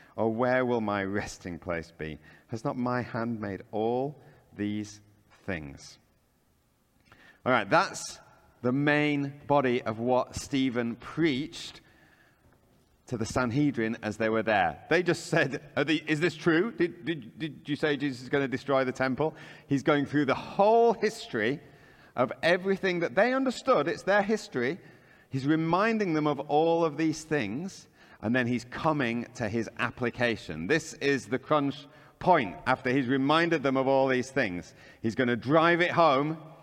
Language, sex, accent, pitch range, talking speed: English, male, British, 120-170 Hz, 160 wpm